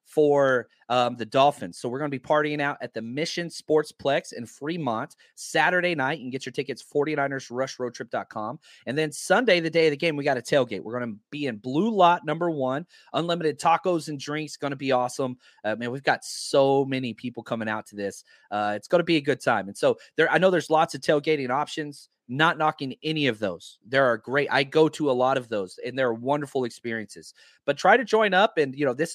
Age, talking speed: 30-49, 225 wpm